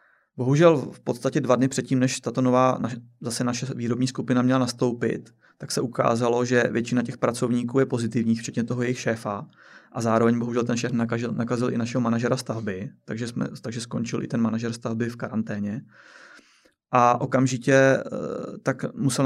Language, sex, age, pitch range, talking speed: Czech, male, 20-39, 120-130 Hz, 160 wpm